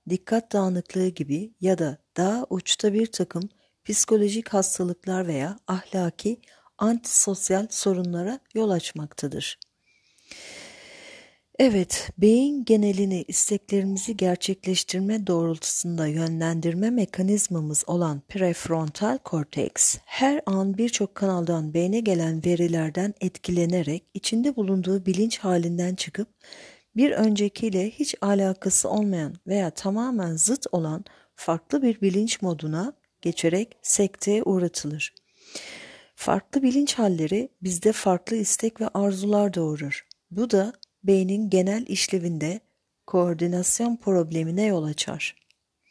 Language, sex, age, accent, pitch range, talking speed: Turkish, female, 50-69, native, 175-210 Hz, 100 wpm